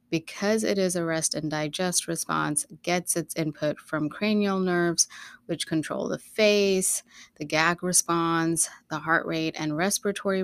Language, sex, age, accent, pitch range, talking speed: English, female, 20-39, American, 155-185 Hz, 150 wpm